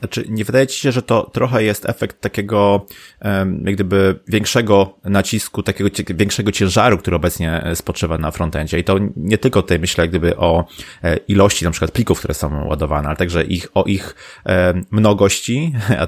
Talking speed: 175 wpm